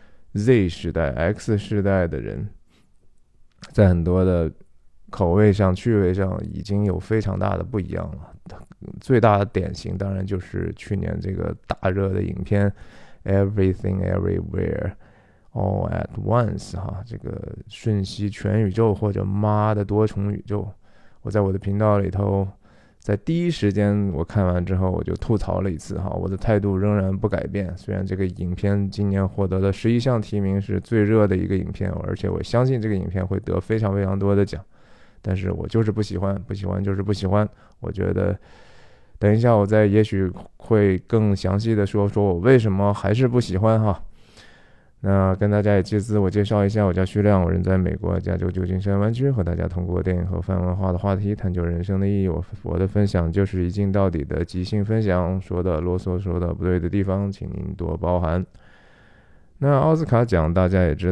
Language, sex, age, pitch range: Chinese, male, 20-39, 95-105 Hz